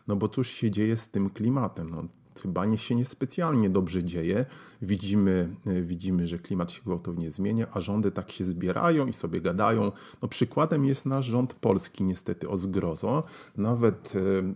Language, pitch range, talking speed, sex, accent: Polish, 95-120 Hz, 165 wpm, male, native